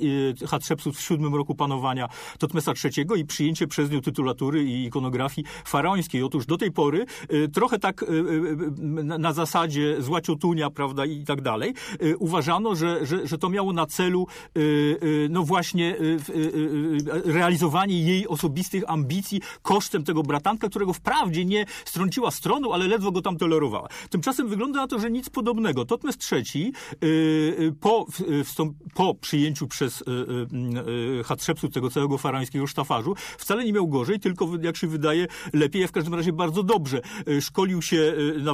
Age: 40-59